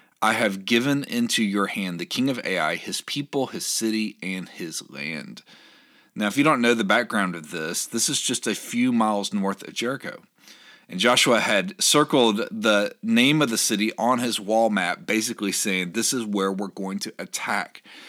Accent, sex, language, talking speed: American, male, English, 190 wpm